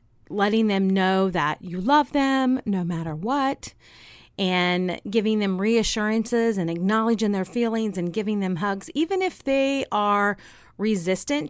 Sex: female